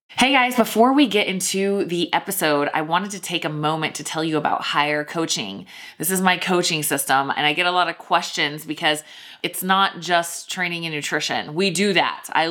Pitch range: 150-175 Hz